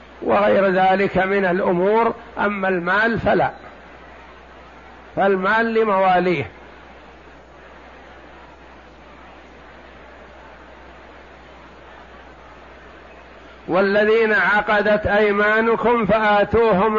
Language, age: Arabic, 60-79